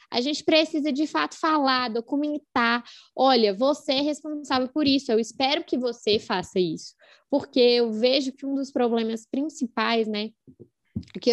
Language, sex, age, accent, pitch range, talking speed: Portuguese, female, 10-29, Brazilian, 215-275 Hz, 155 wpm